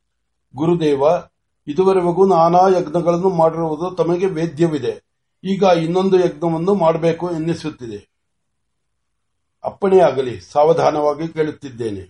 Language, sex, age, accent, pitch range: Marathi, male, 60-79, native, 160-190 Hz